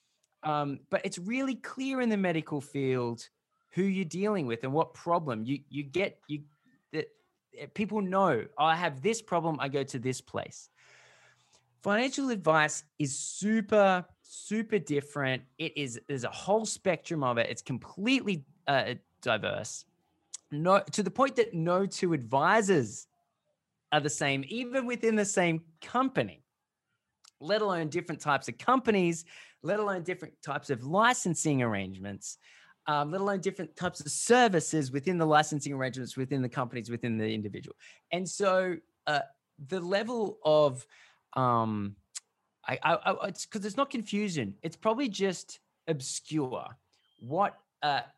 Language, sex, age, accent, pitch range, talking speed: English, male, 20-39, Australian, 140-200 Hz, 145 wpm